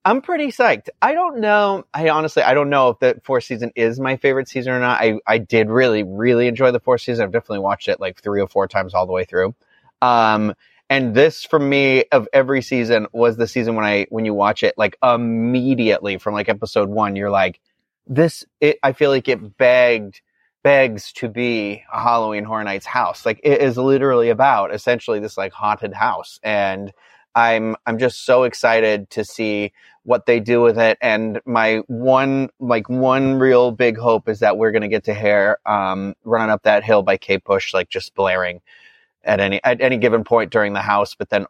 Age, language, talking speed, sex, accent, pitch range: 30-49, English, 205 wpm, male, American, 105-130 Hz